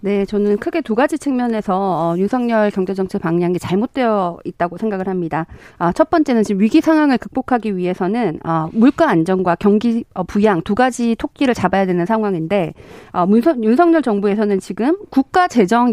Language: Korean